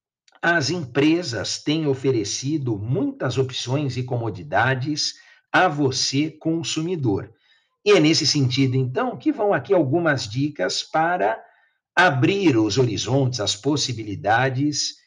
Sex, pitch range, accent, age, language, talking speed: male, 125-155 Hz, Brazilian, 60-79, Portuguese, 110 wpm